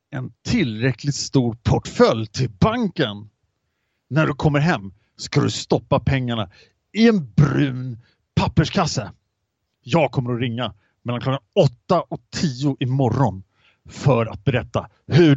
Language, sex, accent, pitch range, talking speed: English, male, Norwegian, 110-150 Hz, 130 wpm